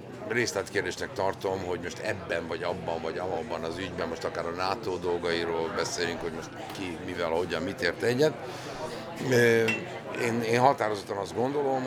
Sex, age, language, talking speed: male, 50-69, Hungarian, 155 wpm